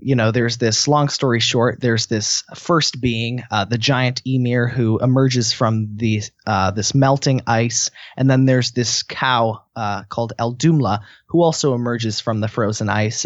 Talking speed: 170 wpm